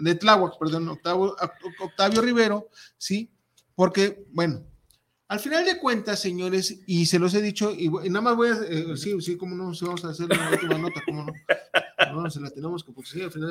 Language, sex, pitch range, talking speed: Spanish, male, 170-215 Hz, 215 wpm